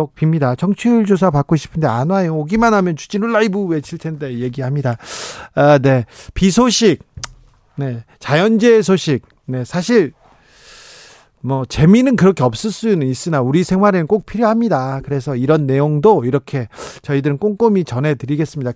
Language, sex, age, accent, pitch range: Korean, male, 40-59, native, 135-185 Hz